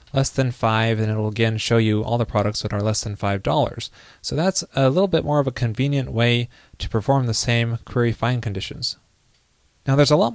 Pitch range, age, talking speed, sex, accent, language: 115-145 Hz, 20-39, 225 wpm, male, American, English